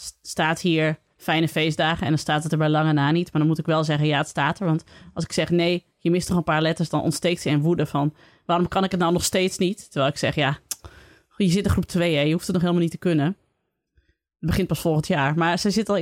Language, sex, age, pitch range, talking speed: Dutch, female, 30-49, 170-240 Hz, 275 wpm